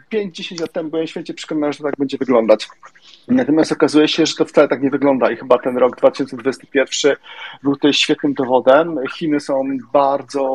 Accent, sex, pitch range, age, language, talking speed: native, male, 130-155 Hz, 40-59, Polish, 195 wpm